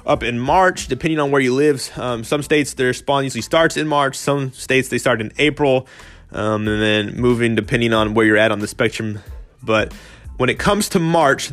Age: 20-39